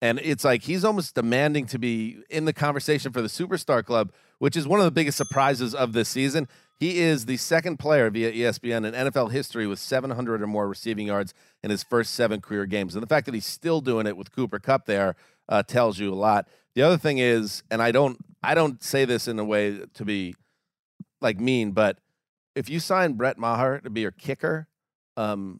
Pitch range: 105-140 Hz